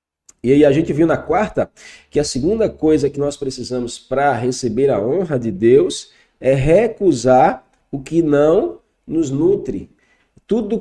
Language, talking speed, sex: Portuguese, 155 wpm, male